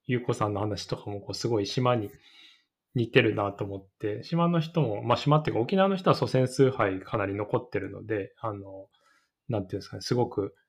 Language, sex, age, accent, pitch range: Japanese, male, 20-39, native, 105-130 Hz